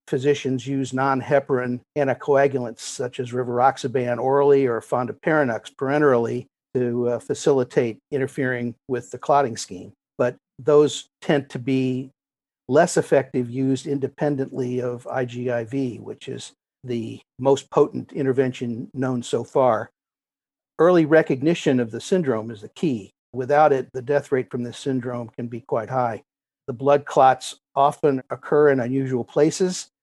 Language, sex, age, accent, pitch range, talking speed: English, male, 50-69, American, 125-140 Hz, 135 wpm